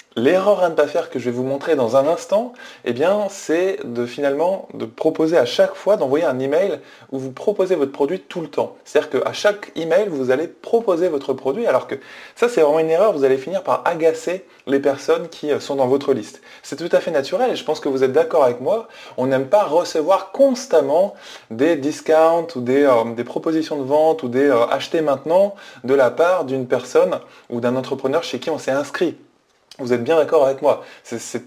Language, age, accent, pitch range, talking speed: French, 20-39, French, 130-180 Hz, 220 wpm